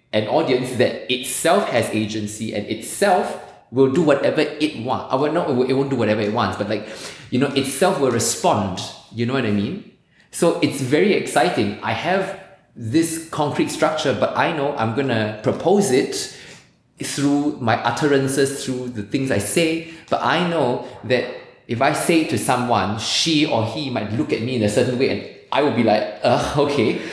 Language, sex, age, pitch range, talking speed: German, male, 20-39, 110-135 Hz, 190 wpm